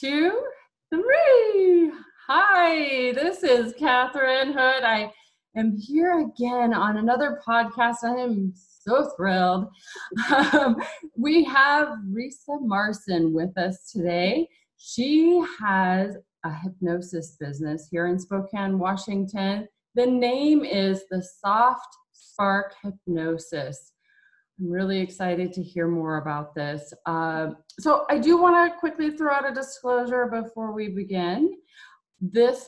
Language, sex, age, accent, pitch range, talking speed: English, female, 30-49, American, 185-265 Hz, 120 wpm